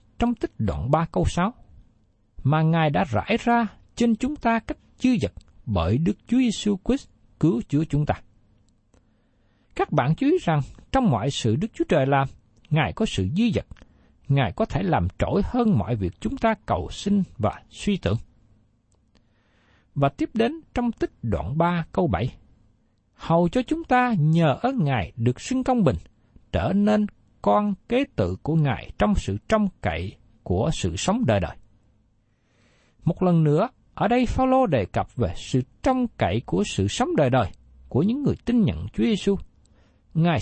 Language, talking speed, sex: Vietnamese, 175 wpm, male